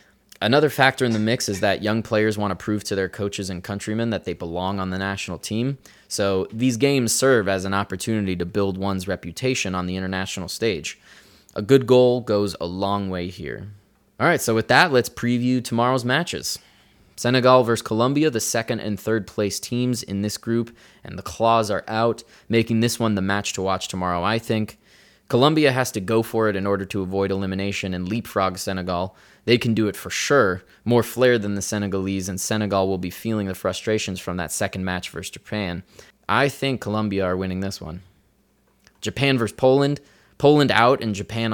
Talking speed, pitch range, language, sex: 195 wpm, 95-115 Hz, English, male